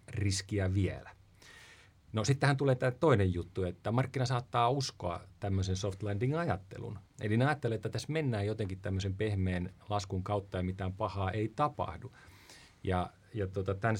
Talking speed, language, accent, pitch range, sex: 150 wpm, Finnish, native, 95-125 Hz, male